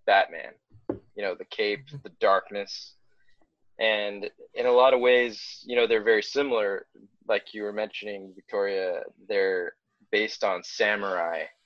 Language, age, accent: English, 20-39, American